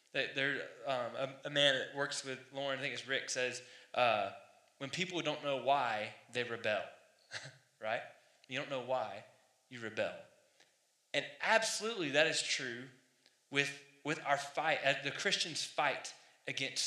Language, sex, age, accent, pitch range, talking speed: English, male, 20-39, American, 145-200 Hz, 150 wpm